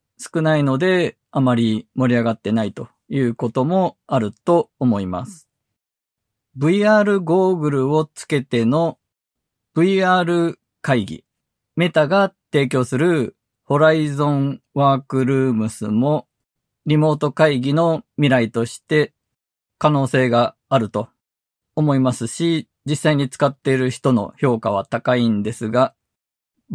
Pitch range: 120-160 Hz